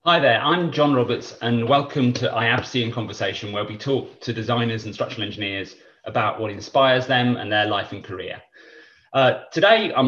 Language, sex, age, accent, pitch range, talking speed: English, male, 30-49, British, 110-150 Hz, 185 wpm